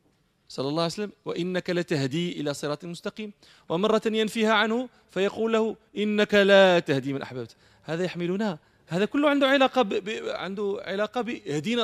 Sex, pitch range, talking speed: male, 160-220 Hz, 145 wpm